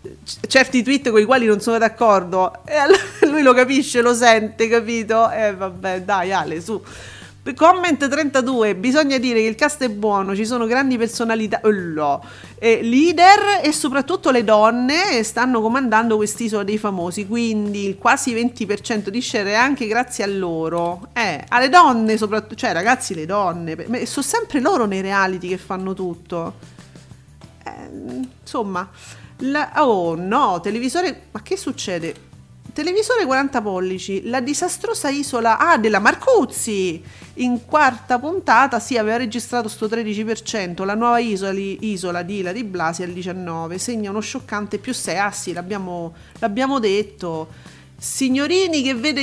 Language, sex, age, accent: Italian, female, 40-59, native